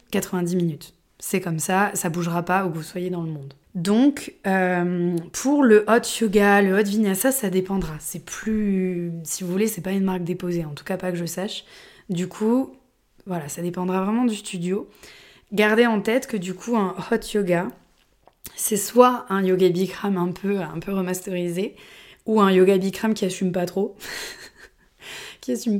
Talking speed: 190 wpm